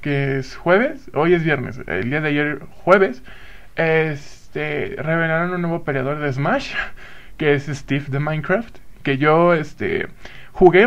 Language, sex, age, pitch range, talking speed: Spanish, male, 20-39, 150-215 Hz, 150 wpm